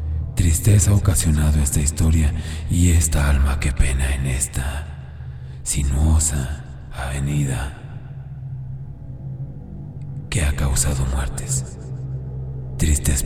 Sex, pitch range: male, 70-115 Hz